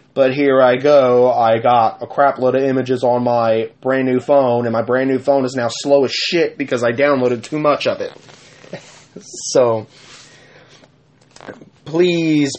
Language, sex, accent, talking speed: English, male, American, 165 wpm